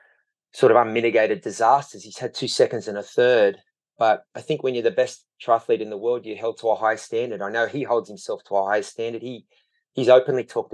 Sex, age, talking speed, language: male, 30-49, 230 wpm, English